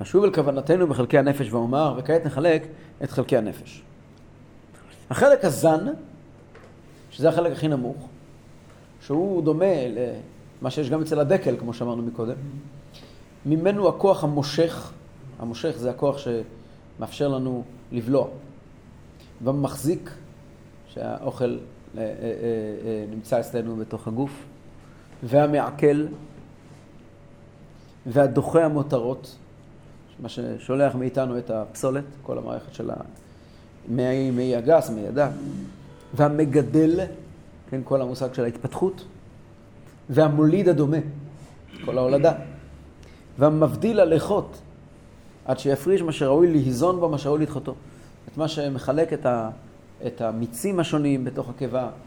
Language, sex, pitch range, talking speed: Hebrew, male, 120-150 Hz, 100 wpm